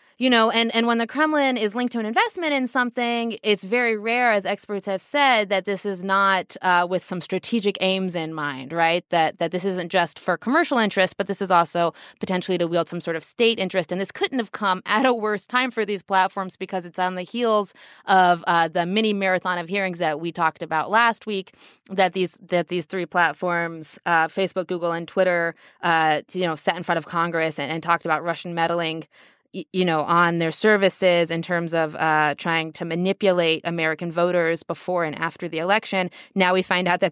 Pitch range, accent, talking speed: 170-210 Hz, American, 215 wpm